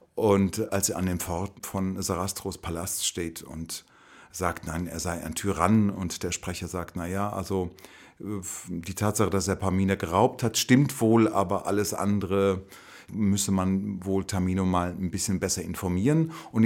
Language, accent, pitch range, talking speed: German, German, 95-110 Hz, 165 wpm